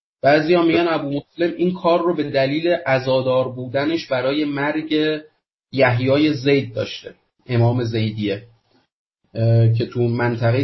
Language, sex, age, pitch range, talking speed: English, male, 30-49, 120-155 Hz, 125 wpm